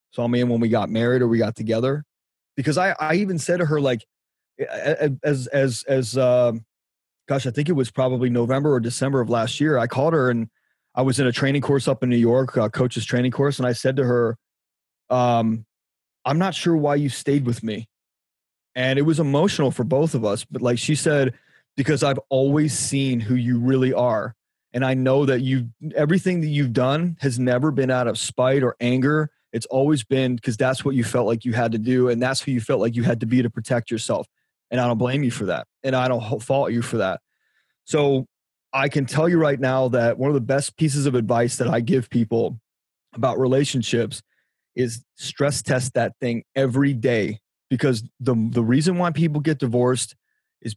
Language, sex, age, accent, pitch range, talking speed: English, male, 30-49, American, 120-140 Hz, 215 wpm